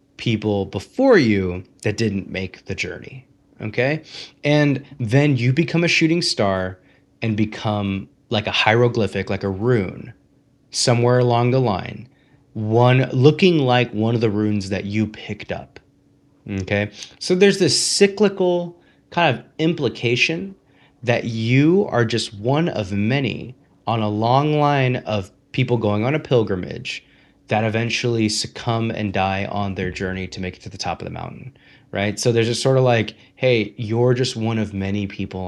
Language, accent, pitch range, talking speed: English, American, 100-130 Hz, 160 wpm